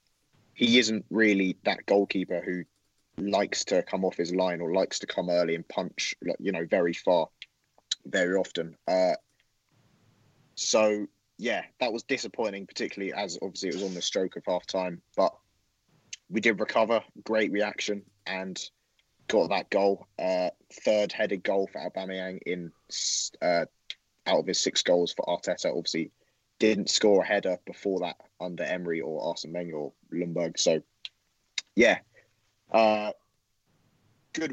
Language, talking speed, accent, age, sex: English, 145 wpm, British, 20-39, male